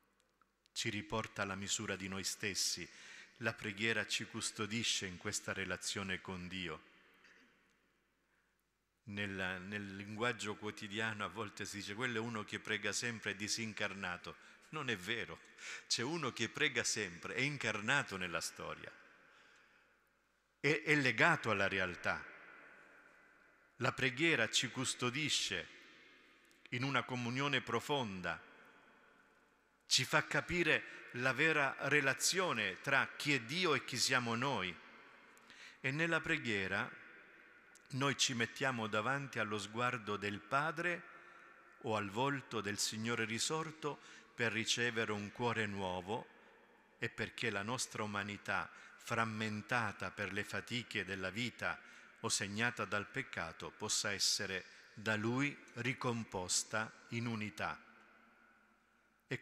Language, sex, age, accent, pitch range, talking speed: Italian, male, 50-69, native, 105-130 Hz, 115 wpm